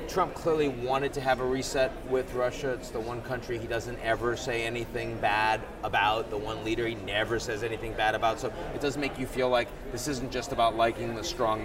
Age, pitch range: 30-49, 115-140 Hz